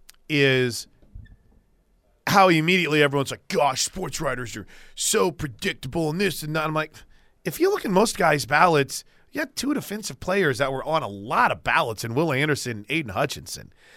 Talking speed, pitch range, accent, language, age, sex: 180 wpm, 125-165 Hz, American, English, 30-49, male